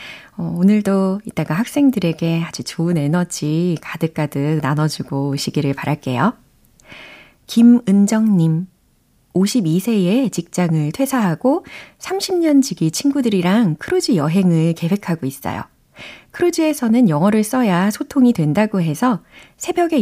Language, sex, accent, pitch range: Korean, female, native, 160-220 Hz